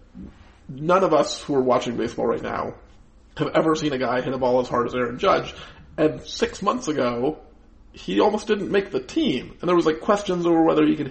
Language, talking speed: English, 220 wpm